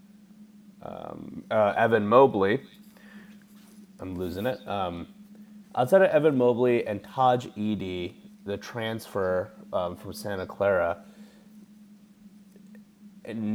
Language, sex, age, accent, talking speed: English, male, 30-49, American, 95 wpm